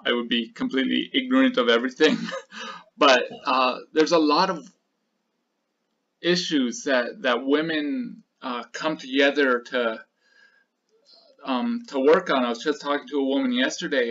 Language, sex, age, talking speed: English, male, 20-39, 140 wpm